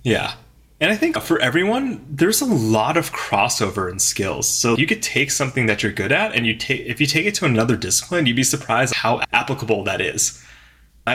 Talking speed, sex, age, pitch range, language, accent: 215 wpm, male, 20-39, 105-135 Hz, English, American